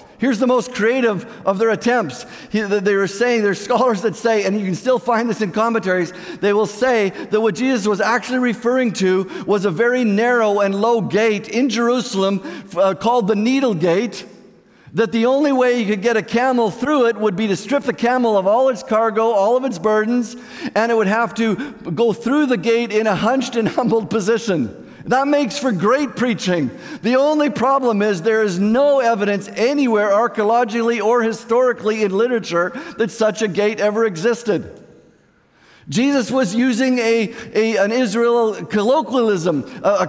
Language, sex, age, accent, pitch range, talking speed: English, male, 50-69, American, 215-255 Hz, 175 wpm